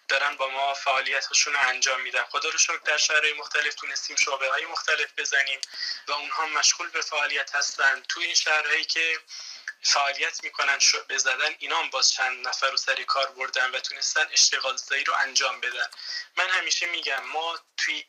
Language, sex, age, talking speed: Persian, male, 20-39, 170 wpm